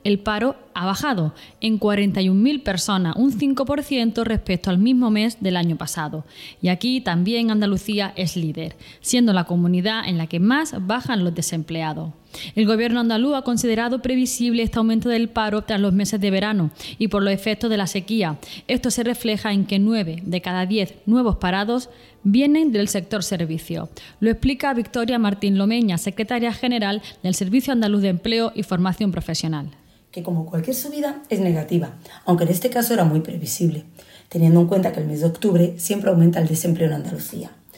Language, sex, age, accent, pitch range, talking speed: Spanish, female, 20-39, Spanish, 170-225 Hz, 175 wpm